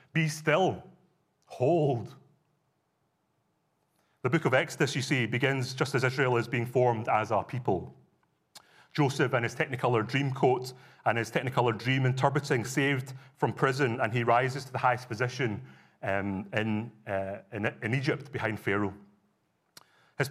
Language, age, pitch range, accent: English, 30-49, 115-140 Hz, British